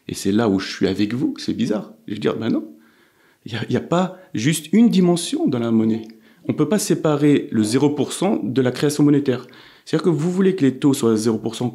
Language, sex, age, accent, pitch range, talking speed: French, male, 40-59, French, 105-140 Hz, 245 wpm